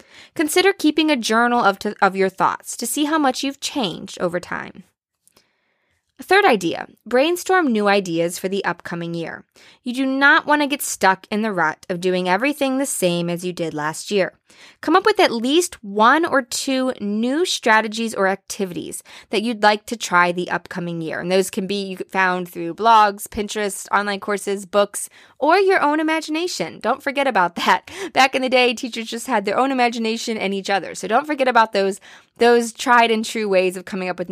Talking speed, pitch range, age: 200 wpm, 180-255 Hz, 20-39